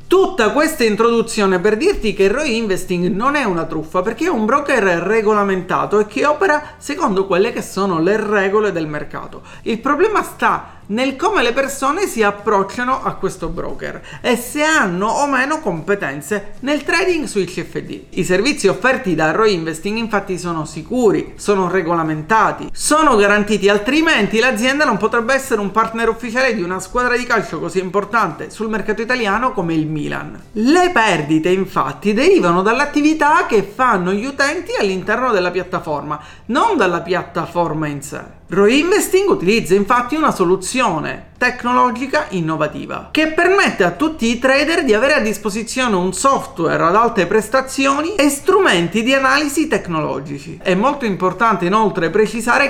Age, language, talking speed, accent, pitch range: 40-59, Italian, 150 wpm, native, 185-275 Hz